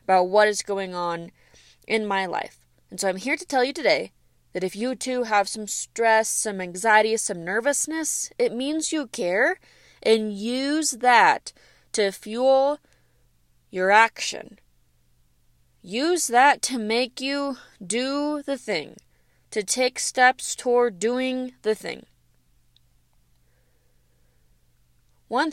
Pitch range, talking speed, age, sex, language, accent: 165-240 Hz, 125 wpm, 20-39, female, English, American